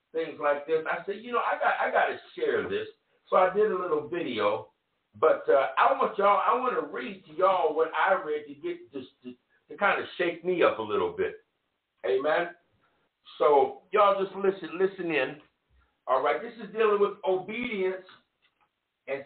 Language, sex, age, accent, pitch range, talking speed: English, male, 60-79, American, 150-225 Hz, 195 wpm